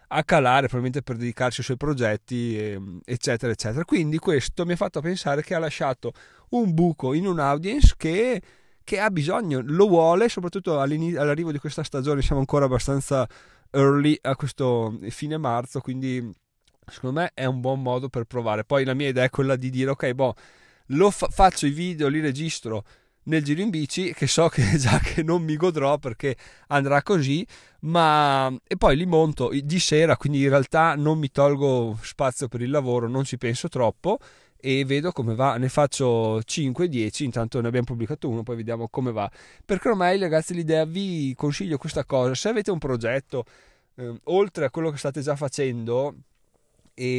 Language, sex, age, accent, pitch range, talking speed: Italian, male, 30-49, native, 125-155 Hz, 180 wpm